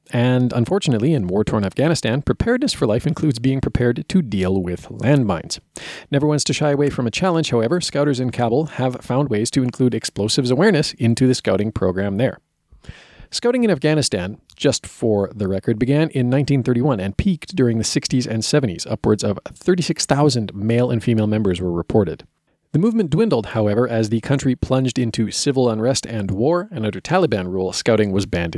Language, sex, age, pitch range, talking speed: English, male, 40-59, 110-150 Hz, 180 wpm